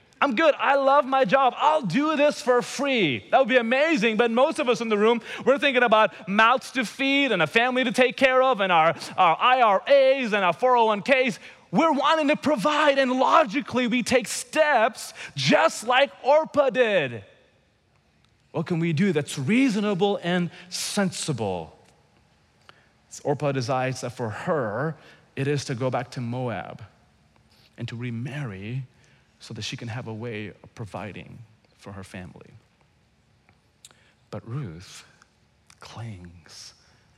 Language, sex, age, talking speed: English, male, 30-49, 150 wpm